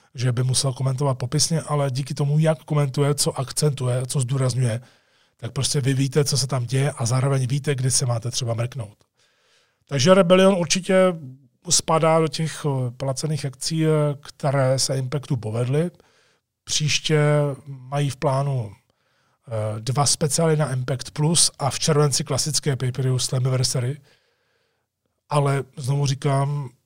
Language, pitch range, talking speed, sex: Czech, 125-145 Hz, 135 wpm, male